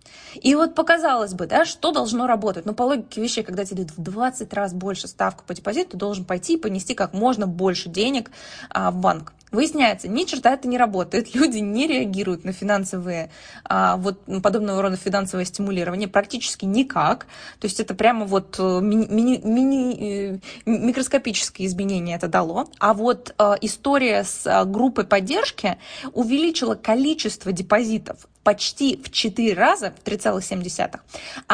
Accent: native